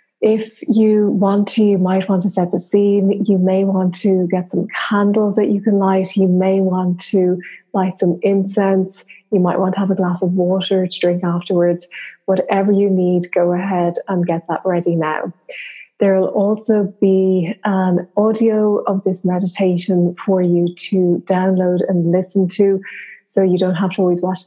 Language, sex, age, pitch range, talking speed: English, female, 20-39, 180-205 Hz, 180 wpm